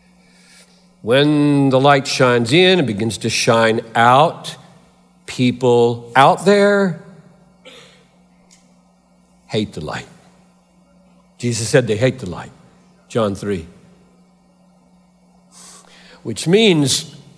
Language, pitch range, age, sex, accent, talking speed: Hindi, 125-190 Hz, 60-79, male, American, 90 wpm